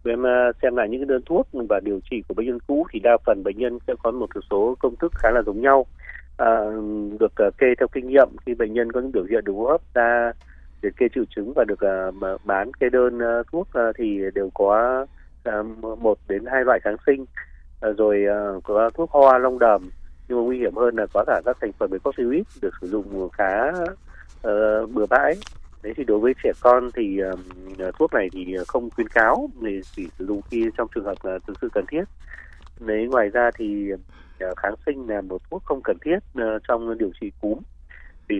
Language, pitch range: Vietnamese, 95-125 Hz